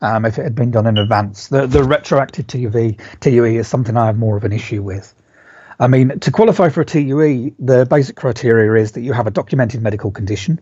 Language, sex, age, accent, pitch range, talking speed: English, male, 30-49, British, 110-145 Hz, 225 wpm